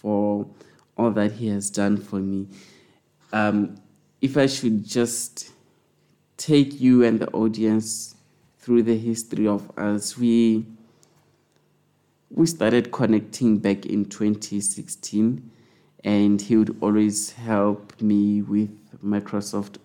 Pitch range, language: 105-115 Hz, English